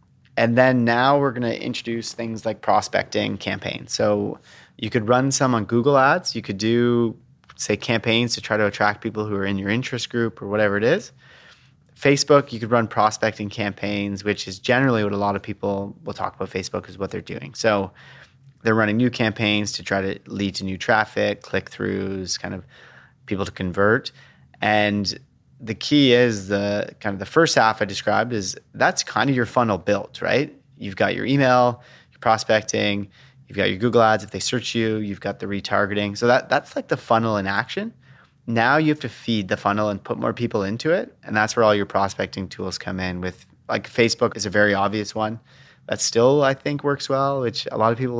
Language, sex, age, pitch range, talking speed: English, male, 30-49, 105-125 Hz, 210 wpm